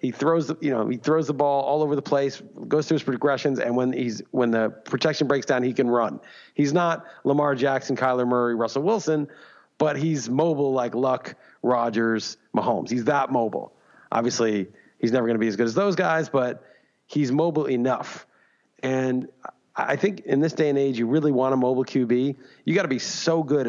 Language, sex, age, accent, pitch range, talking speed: English, male, 40-59, American, 115-140 Hz, 205 wpm